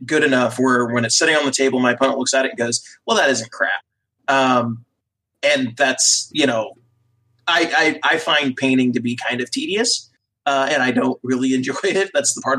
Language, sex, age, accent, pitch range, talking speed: English, male, 30-49, American, 120-140 Hz, 215 wpm